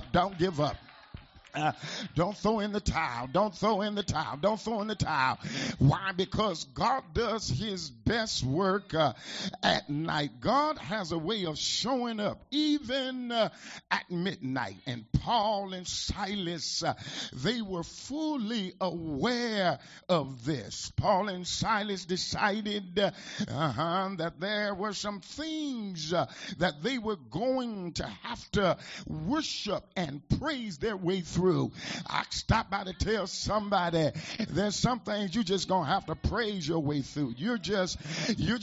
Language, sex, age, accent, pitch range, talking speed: English, male, 50-69, American, 170-220 Hz, 150 wpm